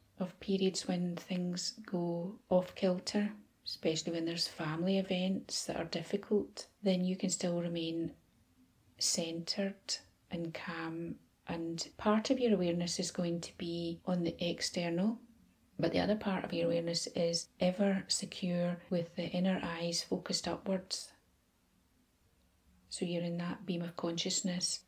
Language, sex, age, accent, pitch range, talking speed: English, female, 30-49, British, 170-195 Hz, 135 wpm